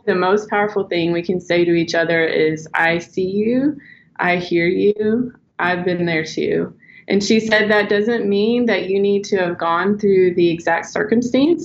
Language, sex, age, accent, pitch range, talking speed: English, female, 20-39, American, 170-205 Hz, 190 wpm